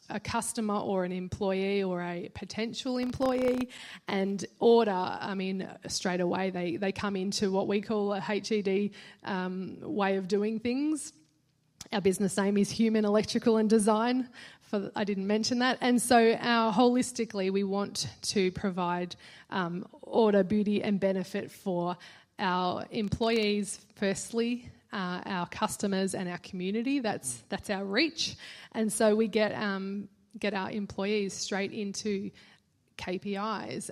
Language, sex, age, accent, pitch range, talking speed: English, female, 20-39, Australian, 185-215 Hz, 140 wpm